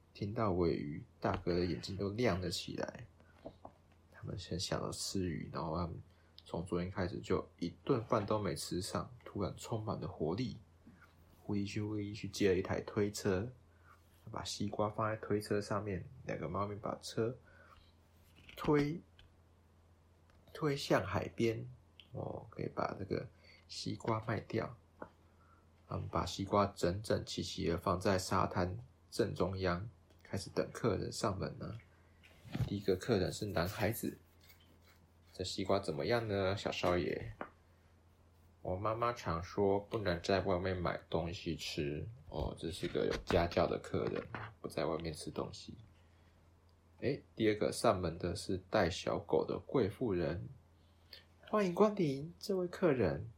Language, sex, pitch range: Chinese, male, 85-110 Hz